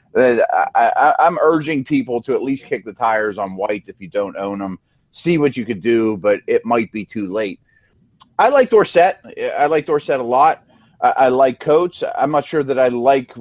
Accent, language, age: American, English, 30-49